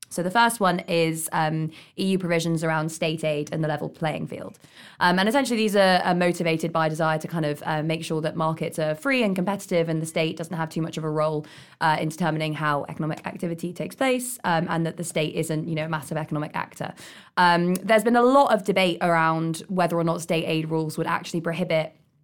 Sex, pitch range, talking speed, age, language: female, 155-180 Hz, 230 wpm, 20-39, English